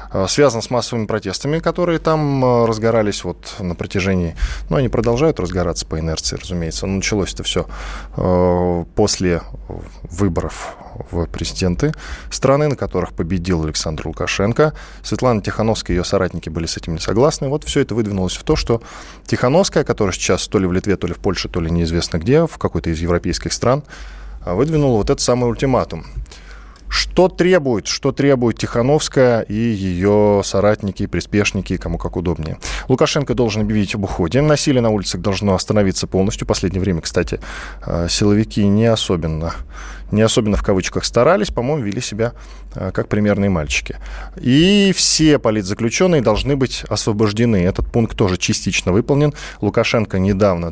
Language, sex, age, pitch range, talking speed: Russian, male, 20-39, 90-120 Hz, 150 wpm